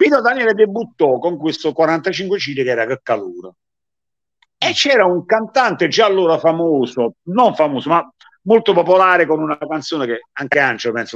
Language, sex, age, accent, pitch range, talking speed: Italian, male, 50-69, native, 145-205 Hz, 150 wpm